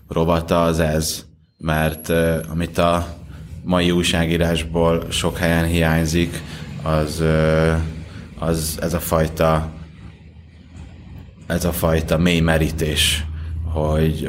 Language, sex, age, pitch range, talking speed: Hungarian, male, 20-39, 80-85 Hz, 100 wpm